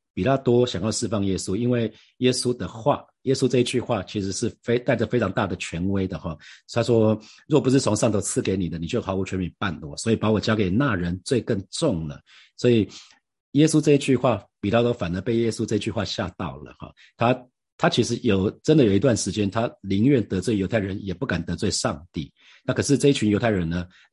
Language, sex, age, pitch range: Chinese, male, 40-59, 95-125 Hz